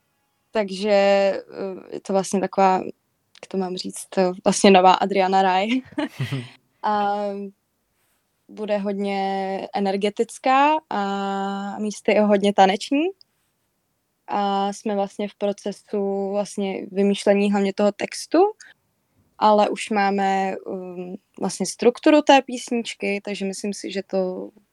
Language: Czech